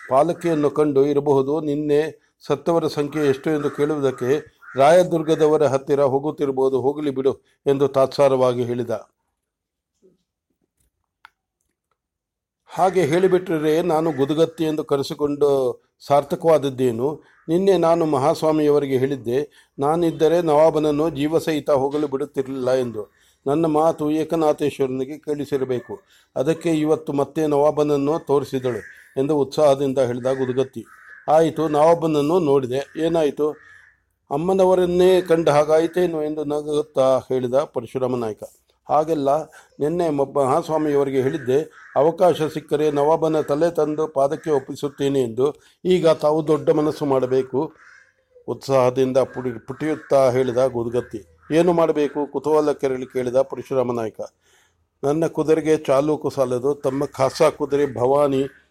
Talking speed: 75 wpm